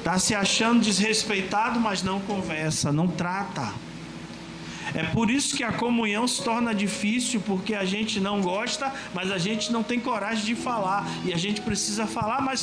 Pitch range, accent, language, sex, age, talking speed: 185-245 Hz, Brazilian, Portuguese, male, 40-59, 175 wpm